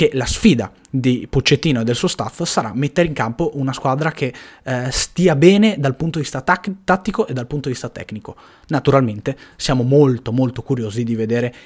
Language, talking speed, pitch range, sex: Italian, 195 wpm, 120-150 Hz, male